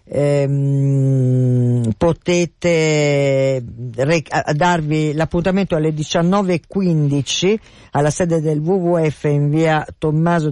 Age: 50-69